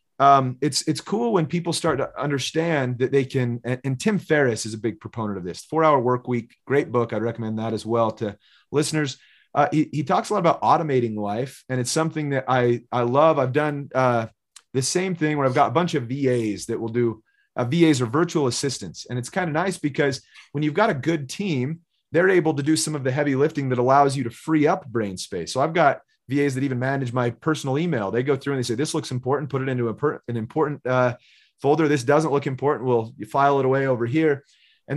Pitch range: 120-150 Hz